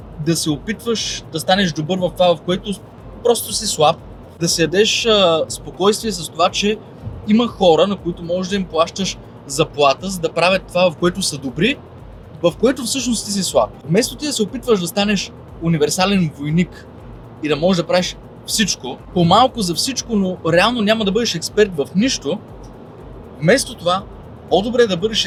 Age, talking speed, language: 20-39, 175 wpm, Bulgarian